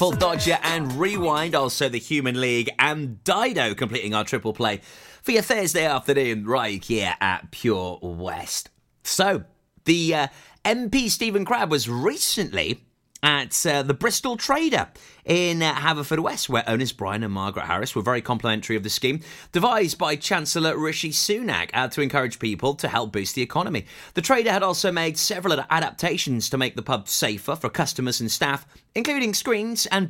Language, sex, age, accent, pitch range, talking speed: English, male, 30-49, British, 115-165 Hz, 170 wpm